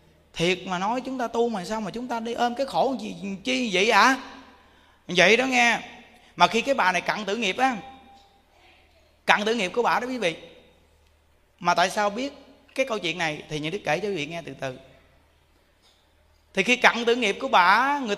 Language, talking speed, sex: Vietnamese, 220 wpm, male